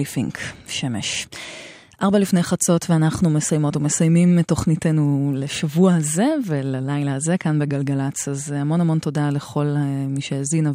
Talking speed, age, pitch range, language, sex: 125 wpm, 20-39, 145-170 Hz, Hebrew, female